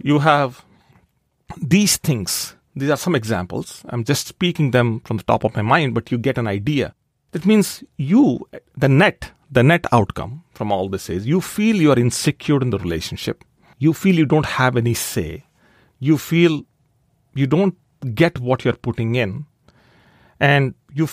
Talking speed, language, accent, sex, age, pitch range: 175 wpm, English, Indian, male, 40-59, 115-150 Hz